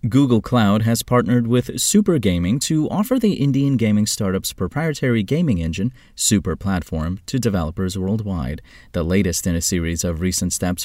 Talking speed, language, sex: 160 wpm, English, male